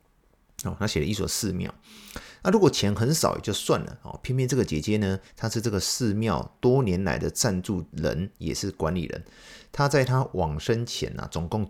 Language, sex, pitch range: Chinese, male, 85-120 Hz